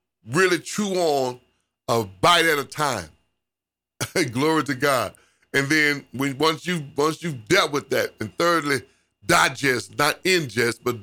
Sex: male